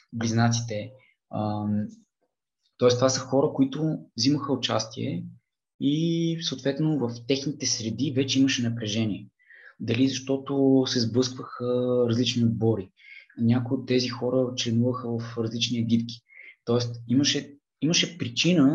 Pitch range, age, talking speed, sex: 115-145 Hz, 20-39, 110 wpm, male